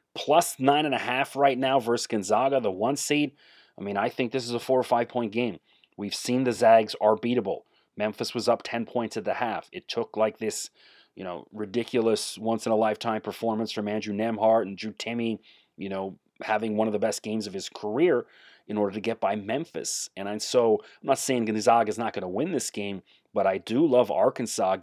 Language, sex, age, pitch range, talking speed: English, male, 30-49, 105-125 Hz, 220 wpm